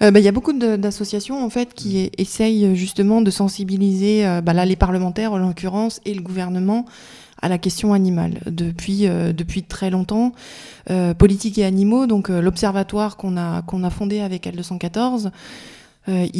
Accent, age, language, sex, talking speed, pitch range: French, 20-39, French, female, 165 wpm, 180-210 Hz